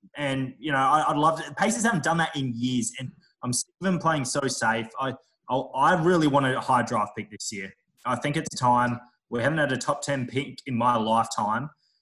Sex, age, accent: male, 20-39, Australian